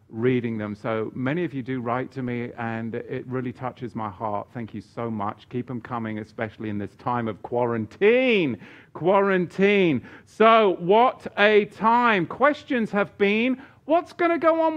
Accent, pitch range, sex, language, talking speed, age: British, 115-160 Hz, male, English, 170 wpm, 50-69